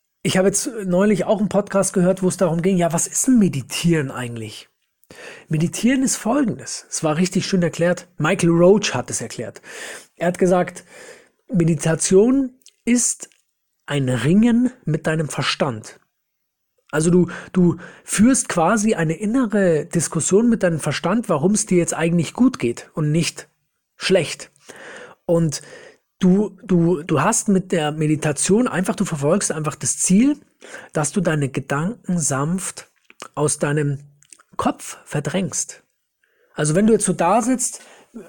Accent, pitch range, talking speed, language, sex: German, 165-215 Hz, 145 wpm, German, male